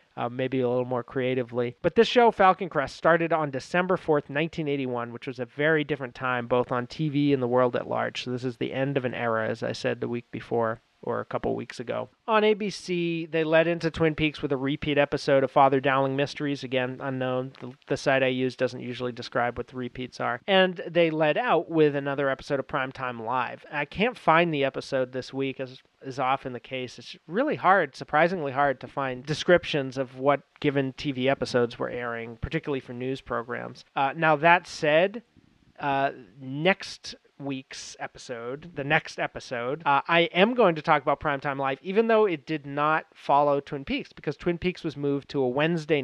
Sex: male